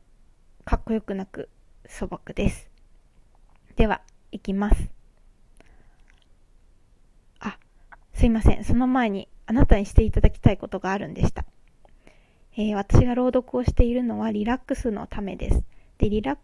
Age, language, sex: 20-39, Japanese, female